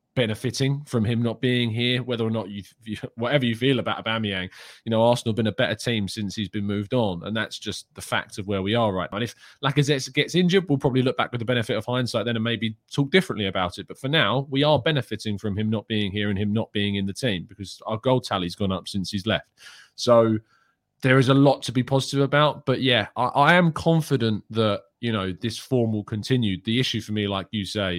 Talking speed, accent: 250 wpm, British